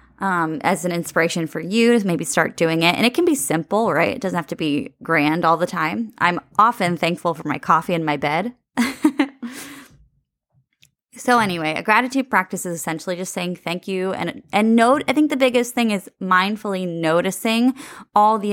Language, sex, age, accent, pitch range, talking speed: English, female, 20-39, American, 170-225 Hz, 190 wpm